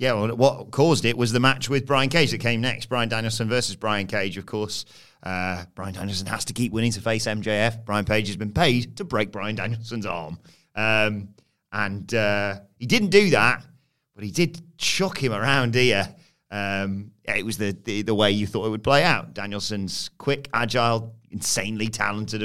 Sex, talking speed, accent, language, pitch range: male, 190 wpm, British, English, 105-130 Hz